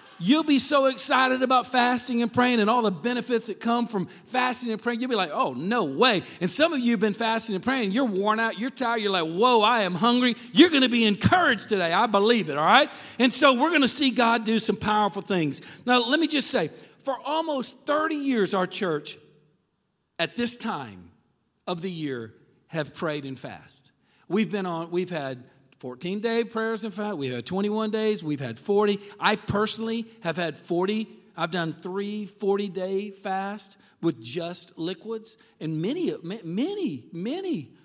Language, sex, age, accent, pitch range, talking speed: English, male, 50-69, American, 170-230 Hz, 195 wpm